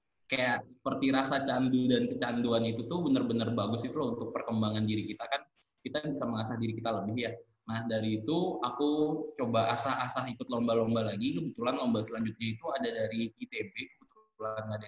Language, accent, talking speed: Indonesian, native, 170 wpm